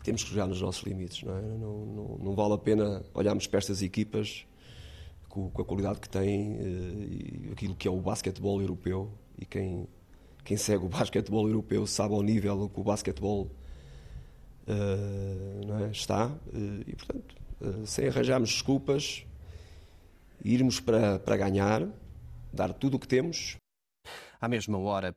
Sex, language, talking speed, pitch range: male, Portuguese, 155 wpm, 95-110 Hz